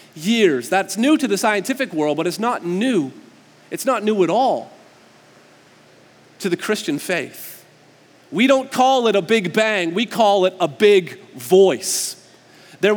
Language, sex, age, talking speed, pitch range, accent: English, male, 40-59, 155 wpm, 175-235 Hz, American